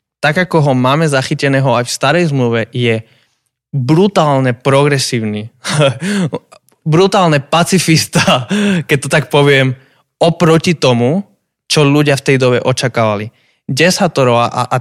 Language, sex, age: Slovak, male, 20-39